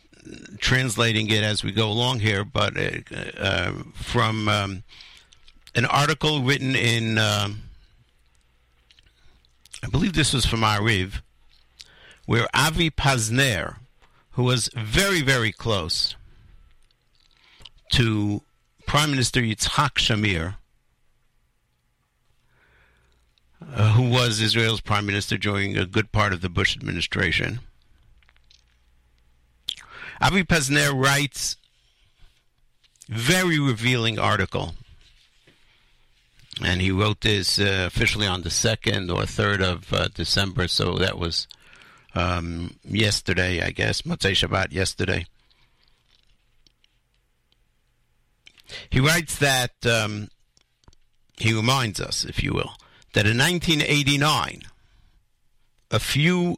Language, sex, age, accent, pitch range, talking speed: English, male, 60-79, American, 90-125 Hz, 100 wpm